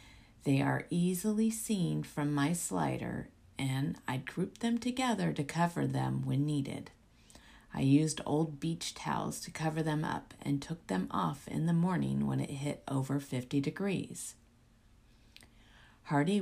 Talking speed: 145 wpm